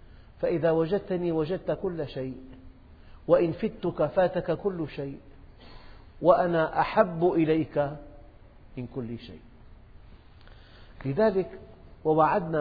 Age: 50-69